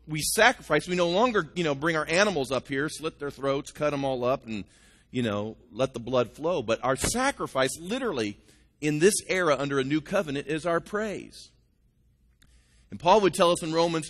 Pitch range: 105-165 Hz